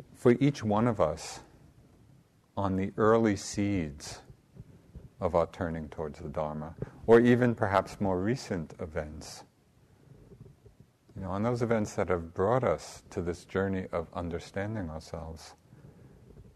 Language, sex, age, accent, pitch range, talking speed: English, male, 50-69, American, 85-115 Hz, 130 wpm